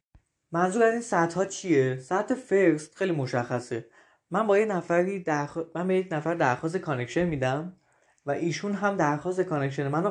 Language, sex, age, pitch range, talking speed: Persian, male, 20-39, 135-185 Hz, 150 wpm